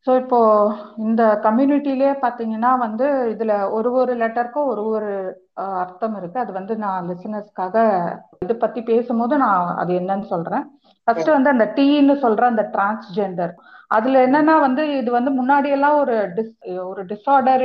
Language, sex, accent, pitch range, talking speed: Tamil, female, native, 205-260 Hz, 80 wpm